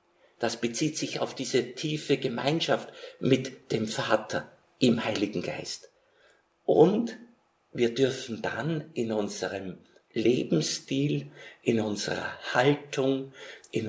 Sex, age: male, 50-69